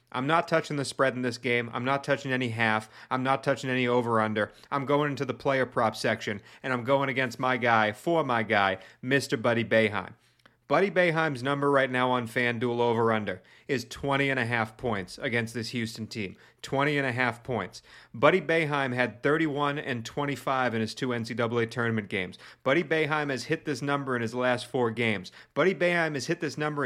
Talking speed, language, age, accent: 200 wpm, English, 40-59, American